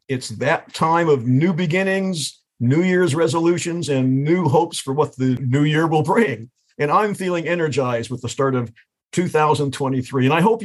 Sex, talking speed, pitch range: male, 175 wpm, 130-165 Hz